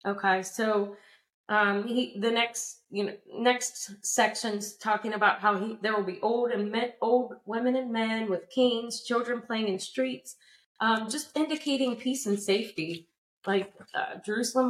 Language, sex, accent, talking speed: English, female, American, 160 wpm